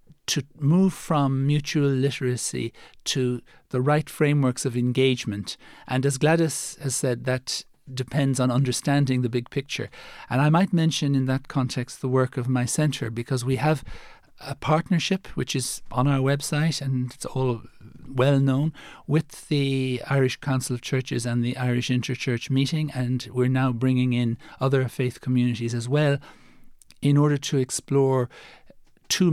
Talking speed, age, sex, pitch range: 155 wpm, 60-79, male, 125-140 Hz